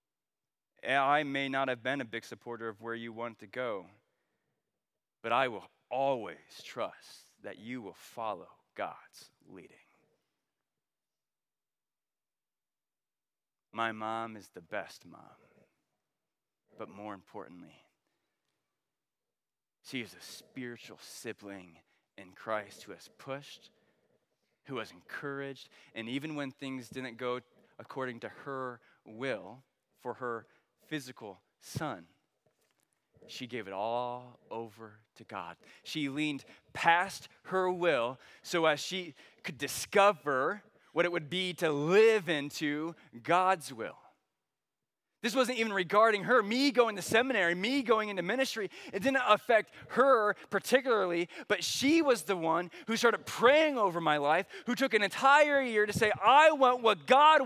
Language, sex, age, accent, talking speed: English, male, 20-39, American, 135 wpm